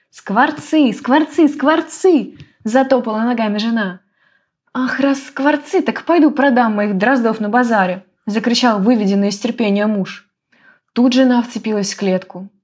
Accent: native